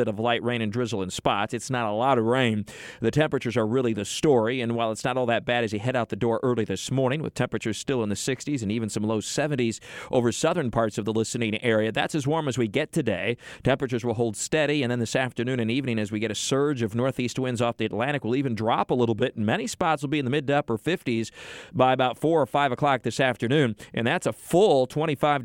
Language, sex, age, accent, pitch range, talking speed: English, male, 40-59, American, 115-135 Hz, 260 wpm